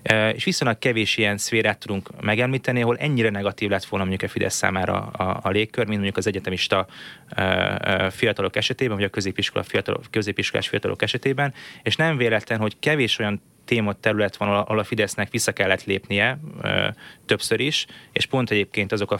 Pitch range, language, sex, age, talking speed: 100-120 Hz, Hungarian, male, 20-39, 180 wpm